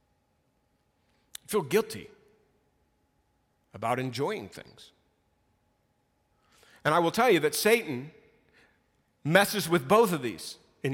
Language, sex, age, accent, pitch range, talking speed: English, male, 50-69, American, 135-205 Hz, 100 wpm